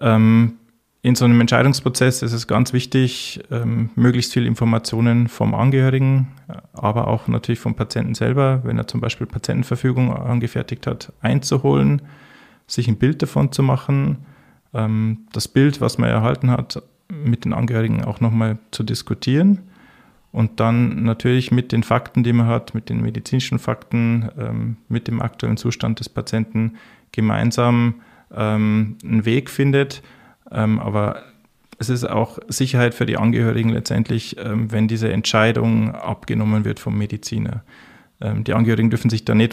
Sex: male